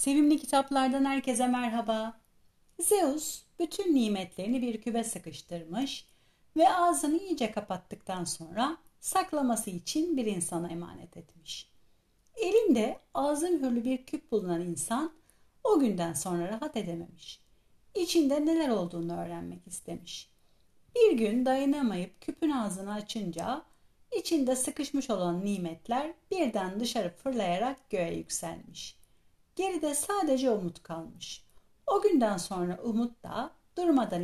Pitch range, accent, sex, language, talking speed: 185-305 Hz, native, female, Turkish, 110 wpm